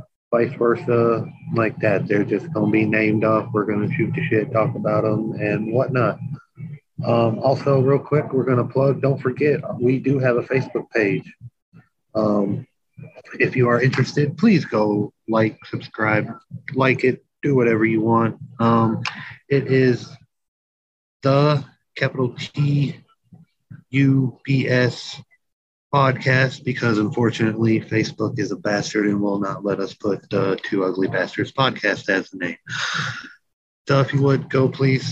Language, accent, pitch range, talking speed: English, American, 115-140 Hz, 145 wpm